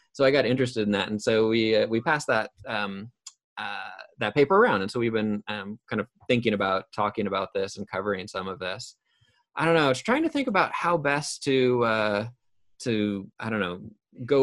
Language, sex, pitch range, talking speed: English, male, 105-130 Hz, 215 wpm